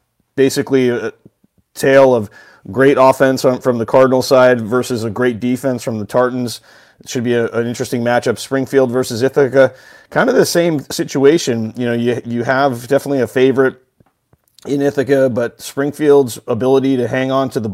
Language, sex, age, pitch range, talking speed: English, male, 30-49, 120-135 Hz, 170 wpm